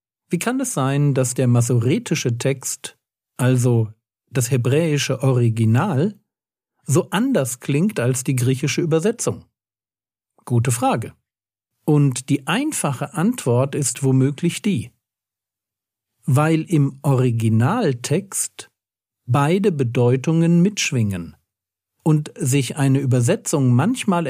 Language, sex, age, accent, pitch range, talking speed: German, male, 50-69, German, 120-155 Hz, 95 wpm